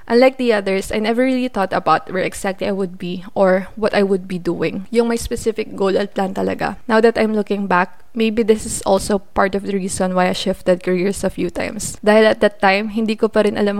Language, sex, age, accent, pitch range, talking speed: Filipino, female, 20-39, native, 185-220 Hz, 240 wpm